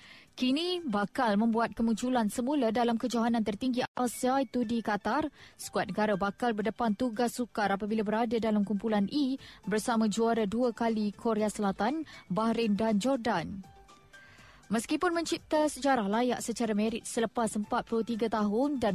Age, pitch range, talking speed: 20-39, 210-250 Hz, 135 wpm